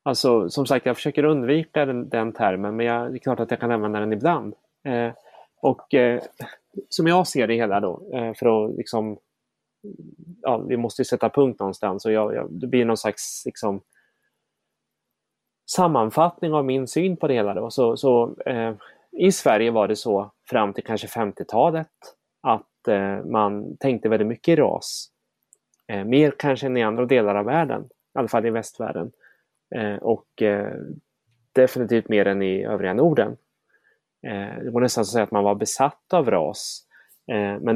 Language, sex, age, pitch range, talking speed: Swedish, male, 30-49, 105-130 Hz, 175 wpm